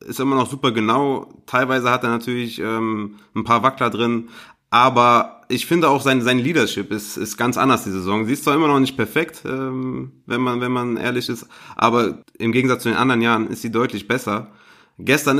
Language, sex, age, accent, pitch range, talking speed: German, male, 30-49, German, 110-135 Hz, 205 wpm